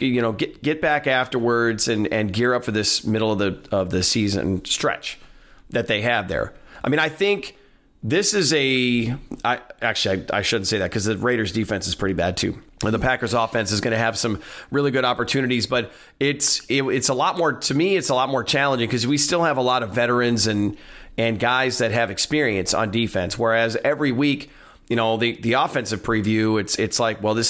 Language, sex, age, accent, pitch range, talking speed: English, male, 30-49, American, 110-130 Hz, 220 wpm